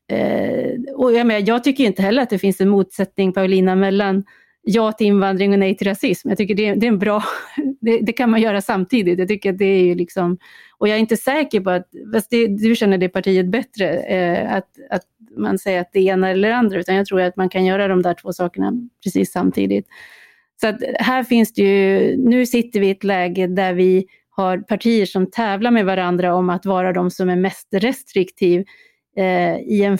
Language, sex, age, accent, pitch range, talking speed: Swedish, female, 30-49, native, 185-225 Hz, 195 wpm